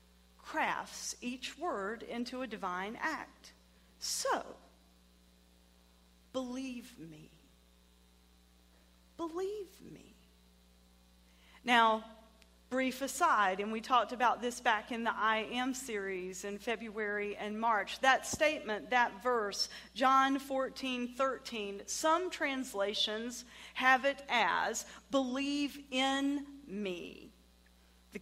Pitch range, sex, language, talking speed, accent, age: 195-265 Hz, female, English, 100 wpm, American, 40-59